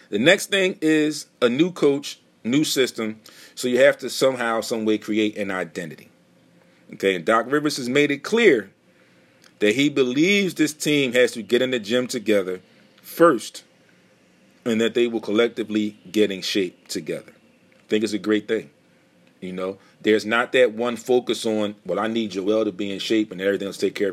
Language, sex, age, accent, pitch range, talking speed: English, male, 40-59, American, 105-125 Hz, 190 wpm